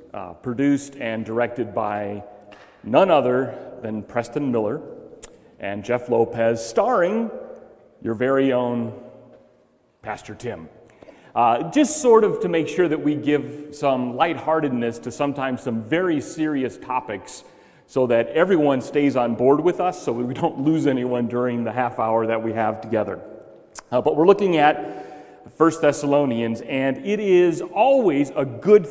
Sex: male